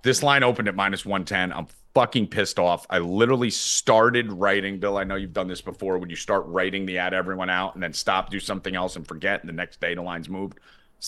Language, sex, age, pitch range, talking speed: English, male, 30-49, 85-110 Hz, 245 wpm